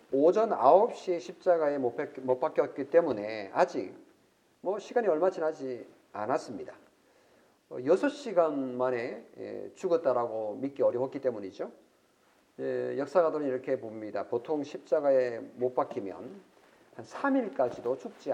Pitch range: 125-165 Hz